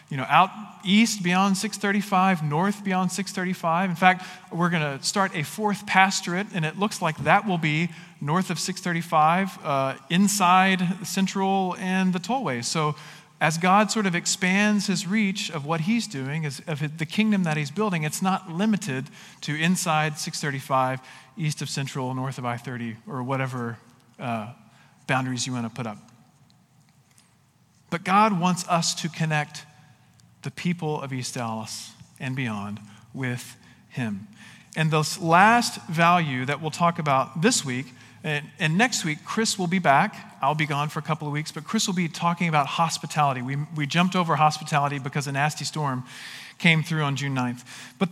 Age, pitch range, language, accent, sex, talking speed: 40-59, 140-190 Hz, English, American, male, 170 wpm